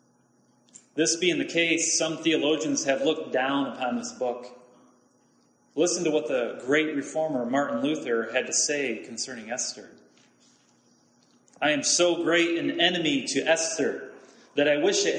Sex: male